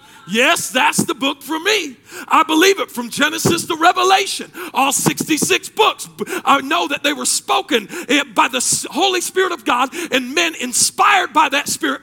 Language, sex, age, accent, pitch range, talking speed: English, male, 40-59, American, 260-340 Hz, 170 wpm